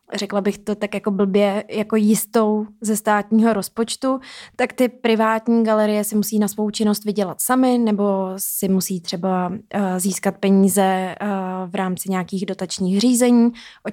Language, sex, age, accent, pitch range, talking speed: Czech, female, 20-39, native, 195-225 Hz, 145 wpm